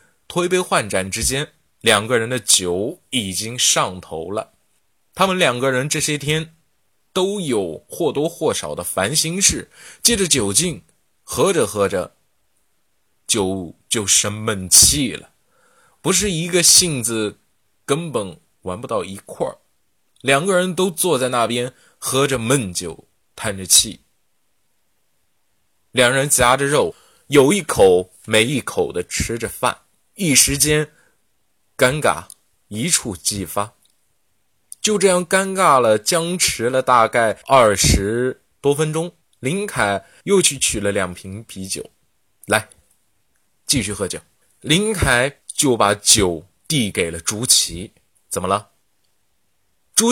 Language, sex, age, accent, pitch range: Chinese, male, 20-39, native, 100-165 Hz